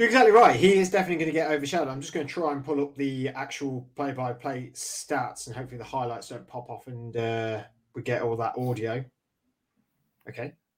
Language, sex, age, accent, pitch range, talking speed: English, male, 20-39, British, 130-155 Hz, 200 wpm